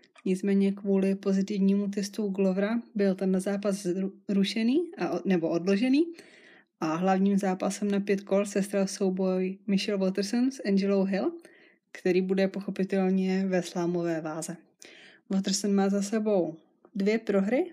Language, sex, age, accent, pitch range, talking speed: Czech, female, 20-39, native, 190-215 Hz, 130 wpm